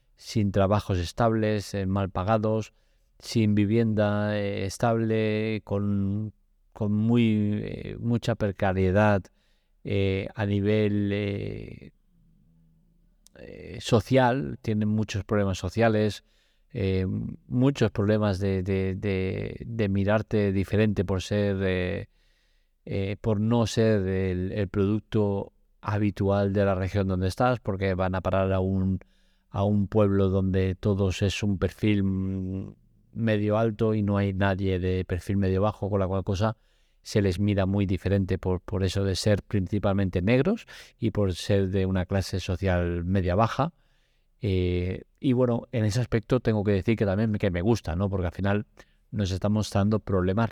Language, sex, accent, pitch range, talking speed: English, male, Spanish, 95-110 Hz, 145 wpm